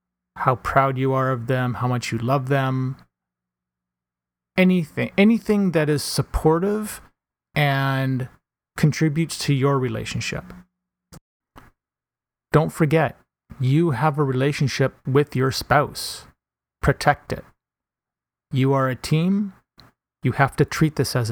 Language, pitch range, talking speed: English, 120-155 Hz, 120 wpm